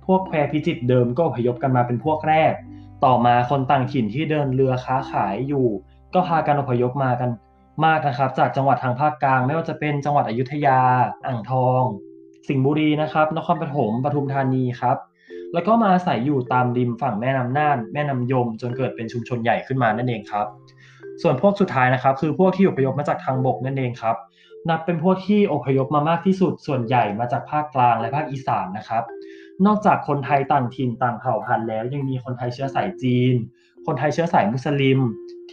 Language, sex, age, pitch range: Thai, male, 20-39, 120-150 Hz